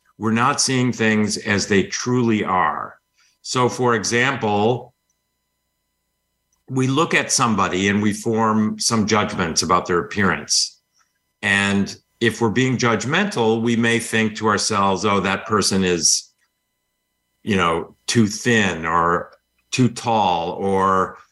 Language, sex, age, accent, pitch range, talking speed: English, male, 50-69, American, 95-115 Hz, 125 wpm